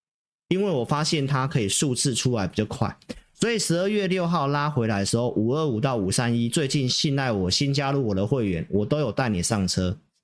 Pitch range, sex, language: 115-170 Hz, male, Chinese